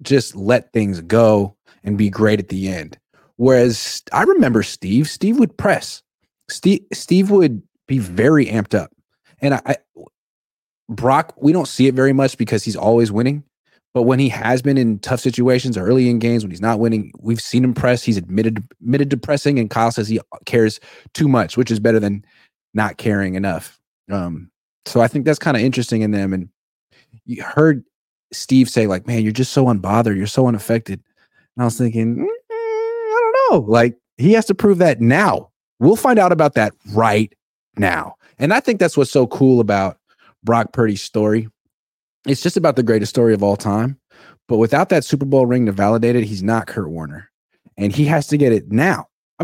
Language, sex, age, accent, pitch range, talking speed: English, male, 30-49, American, 110-140 Hz, 195 wpm